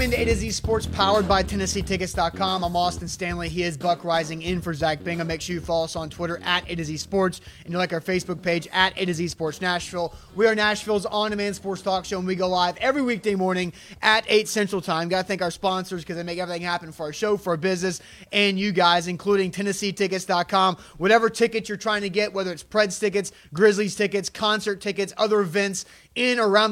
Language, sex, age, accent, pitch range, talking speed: English, male, 30-49, American, 170-205 Hz, 215 wpm